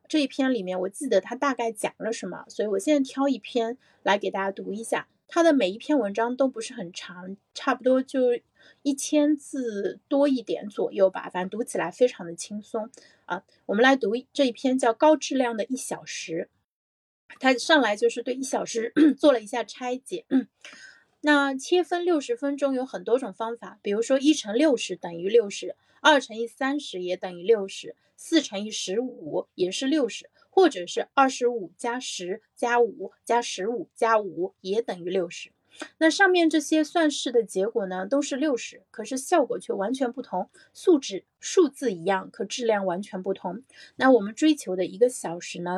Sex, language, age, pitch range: female, Chinese, 30-49, 200-280 Hz